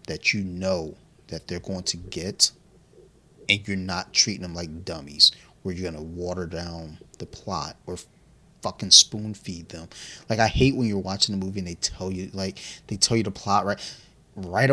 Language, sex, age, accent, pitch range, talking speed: English, male, 30-49, American, 90-115 Hz, 195 wpm